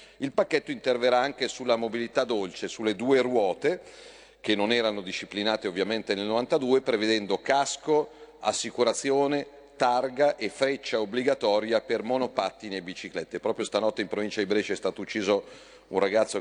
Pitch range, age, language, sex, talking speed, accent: 105-140 Hz, 40-59, Italian, male, 145 wpm, native